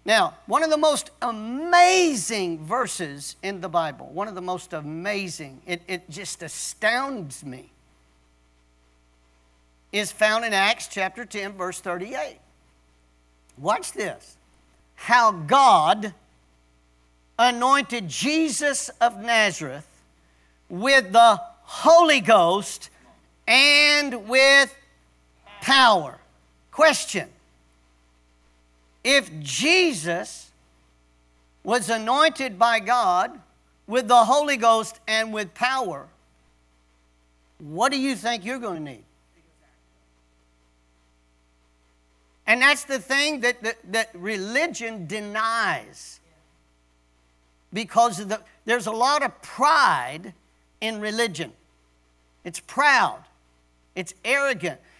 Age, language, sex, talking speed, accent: 50-69, English, male, 95 wpm, American